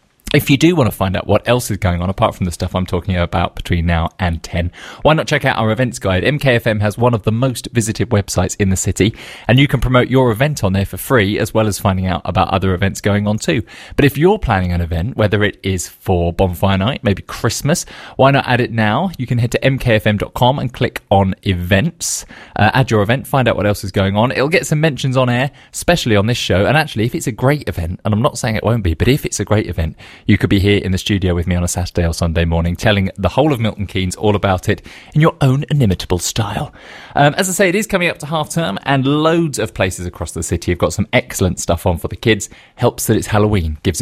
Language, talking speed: English, 260 wpm